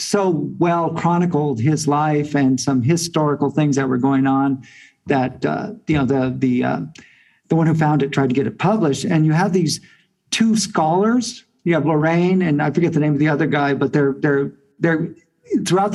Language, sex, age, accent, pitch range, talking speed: English, male, 50-69, American, 150-180 Hz, 200 wpm